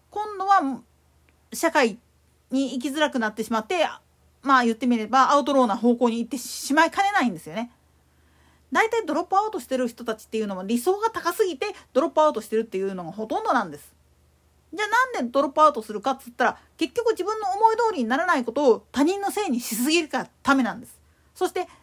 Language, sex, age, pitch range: Japanese, female, 40-59, 240-370 Hz